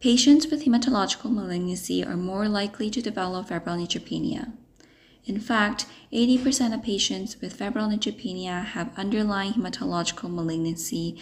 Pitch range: 185-250 Hz